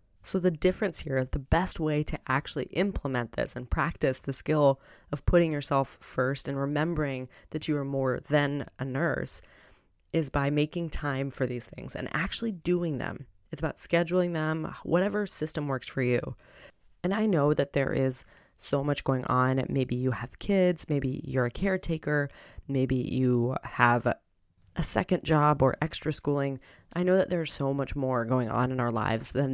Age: 20-39